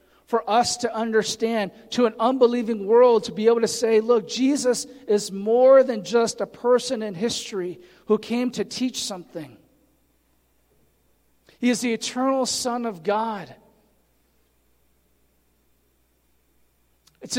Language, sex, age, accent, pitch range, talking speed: English, male, 40-59, American, 185-255 Hz, 125 wpm